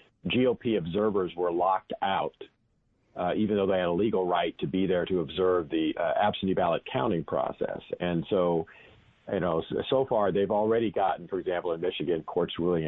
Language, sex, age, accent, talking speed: English, male, 50-69, American, 180 wpm